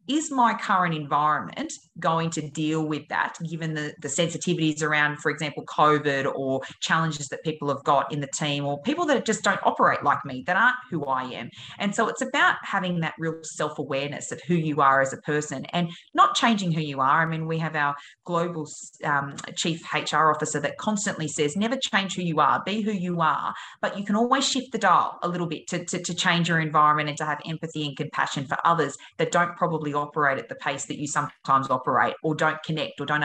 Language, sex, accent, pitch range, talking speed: English, female, Australian, 150-180 Hz, 220 wpm